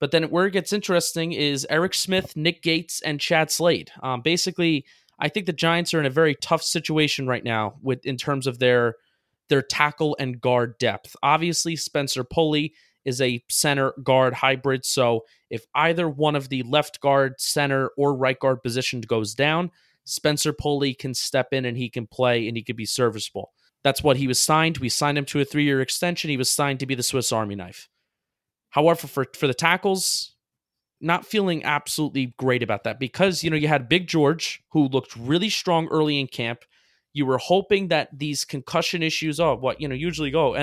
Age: 20-39